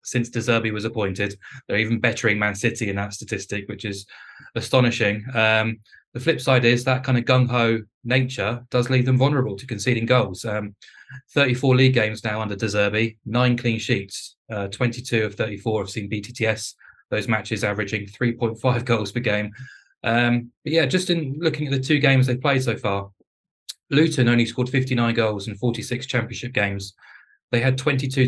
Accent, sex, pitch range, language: British, male, 105-125 Hz, English